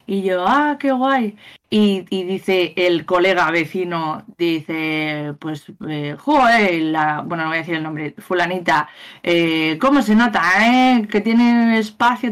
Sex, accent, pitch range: female, Spanish, 165-230 Hz